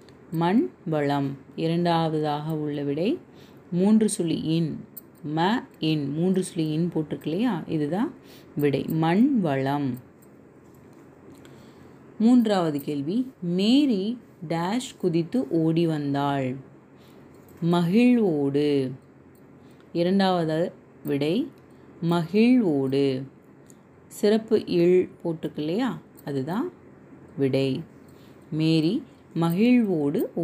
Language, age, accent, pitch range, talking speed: Tamil, 30-49, native, 145-195 Hz, 60 wpm